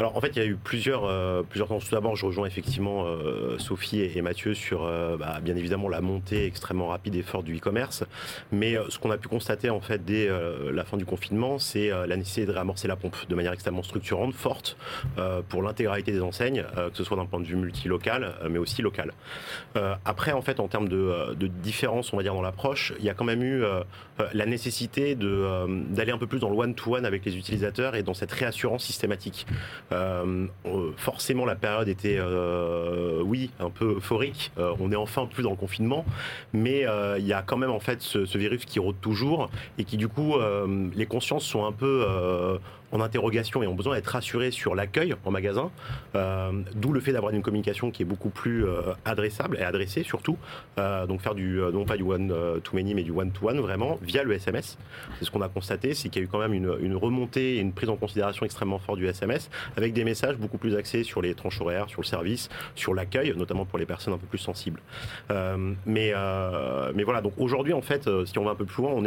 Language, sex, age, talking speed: French, male, 30-49, 235 wpm